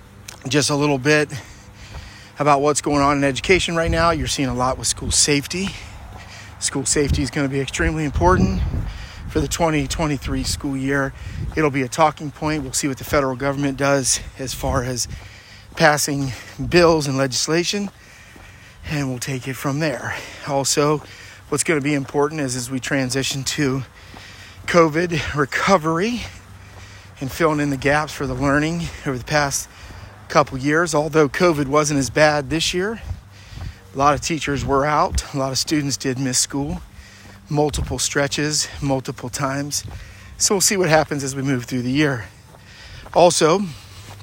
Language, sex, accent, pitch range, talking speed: English, male, American, 105-150 Hz, 160 wpm